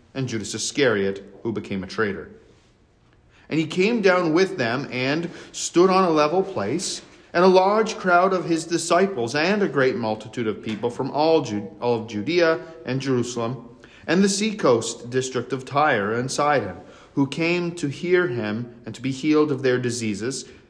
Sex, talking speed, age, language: male, 170 wpm, 40-59, English